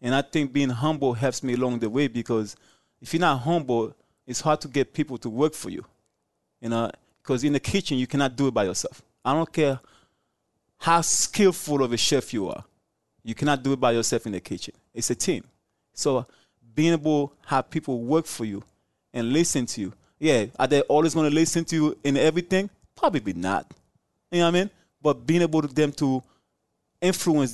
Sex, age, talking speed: male, 20-39, 210 wpm